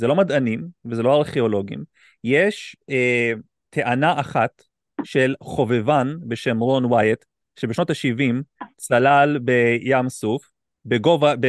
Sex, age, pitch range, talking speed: male, 30-49, 120-150 Hz, 110 wpm